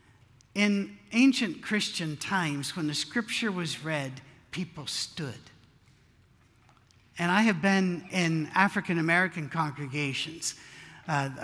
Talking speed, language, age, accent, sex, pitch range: 100 wpm, English, 60-79, American, male, 145-195 Hz